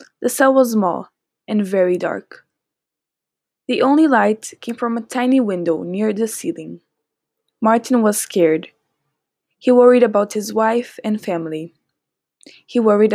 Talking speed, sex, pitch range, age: 135 wpm, female, 210-270 Hz, 10-29